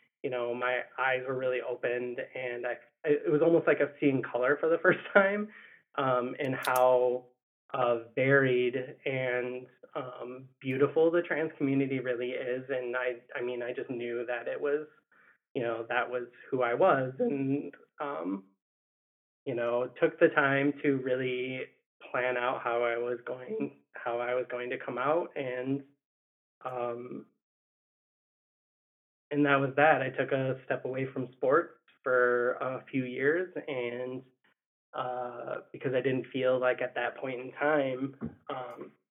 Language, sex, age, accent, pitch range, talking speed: English, male, 20-39, American, 125-140 Hz, 155 wpm